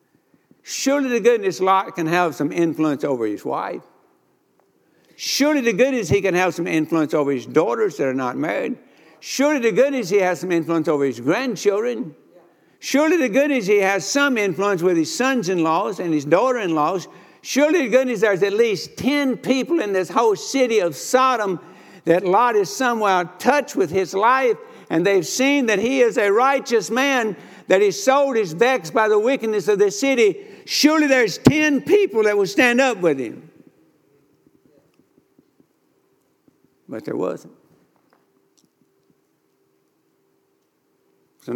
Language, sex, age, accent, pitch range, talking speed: English, male, 60-79, American, 165-270 Hz, 155 wpm